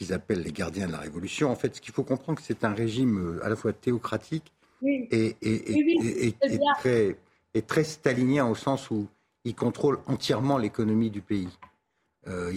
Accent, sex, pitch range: French, male, 105-140 Hz